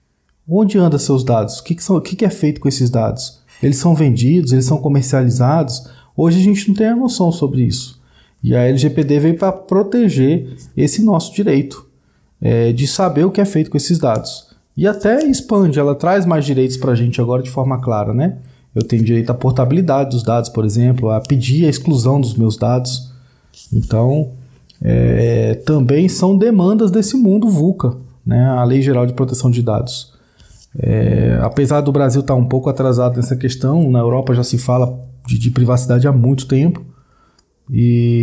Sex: male